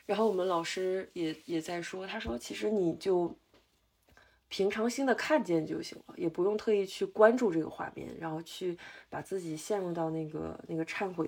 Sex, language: female, Chinese